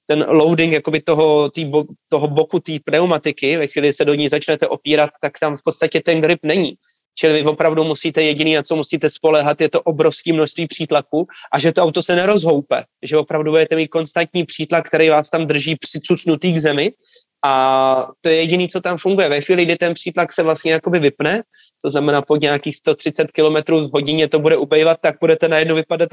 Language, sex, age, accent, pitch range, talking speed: Czech, male, 20-39, native, 150-175 Hz, 200 wpm